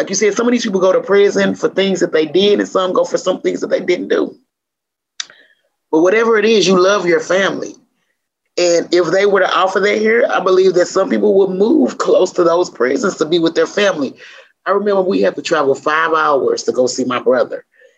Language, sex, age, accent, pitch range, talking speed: English, male, 30-49, American, 170-280 Hz, 235 wpm